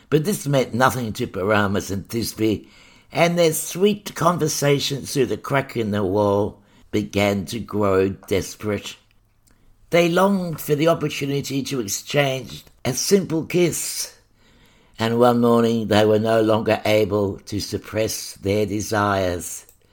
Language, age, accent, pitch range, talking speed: English, 60-79, British, 105-140 Hz, 130 wpm